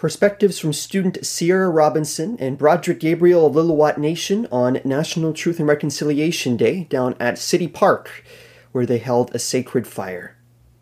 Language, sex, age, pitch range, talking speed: English, male, 30-49, 125-185 Hz, 150 wpm